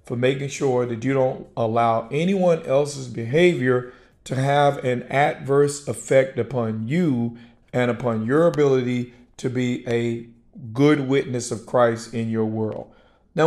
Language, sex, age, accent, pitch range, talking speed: English, male, 50-69, American, 120-150 Hz, 145 wpm